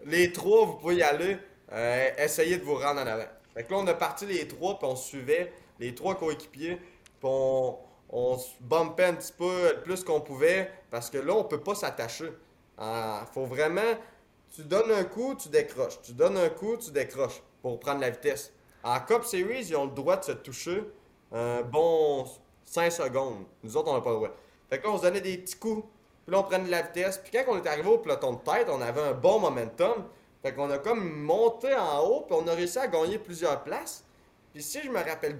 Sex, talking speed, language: male, 230 wpm, French